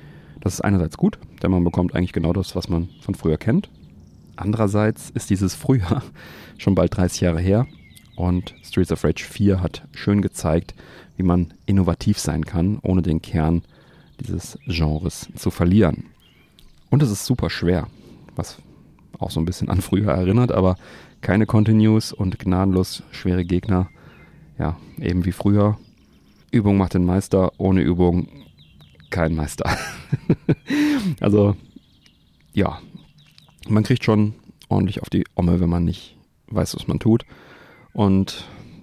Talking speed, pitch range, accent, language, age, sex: 145 wpm, 90-105 Hz, German, German, 40-59, male